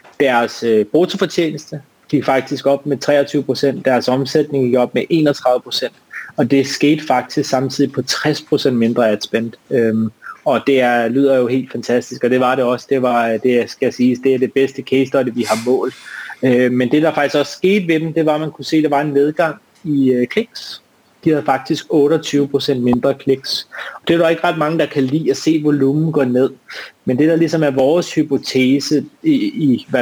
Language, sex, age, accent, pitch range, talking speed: Danish, male, 30-49, native, 125-150 Hz, 215 wpm